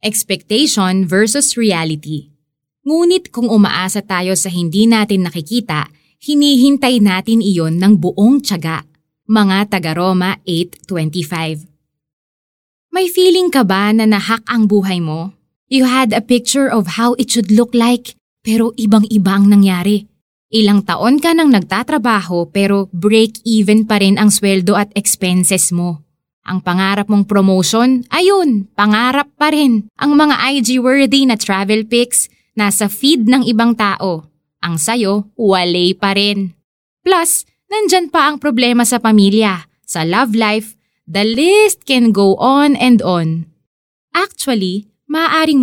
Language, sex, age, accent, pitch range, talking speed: Filipino, female, 20-39, native, 185-240 Hz, 130 wpm